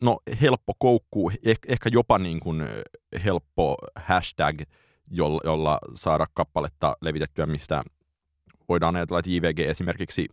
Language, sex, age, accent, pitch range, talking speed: Finnish, male, 30-49, native, 80-95 Hz, 110 wpm